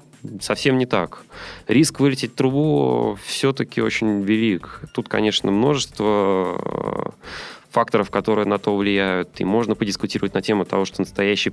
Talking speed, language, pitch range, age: 135 wpm, Russian, 95-110 Hz, 20-39